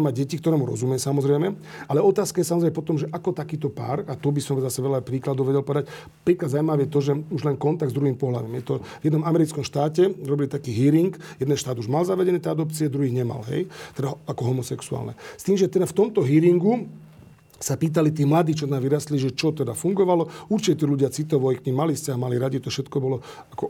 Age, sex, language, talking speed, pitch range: 40-59, male, Slovak, 225 wpm, 135-160 Hz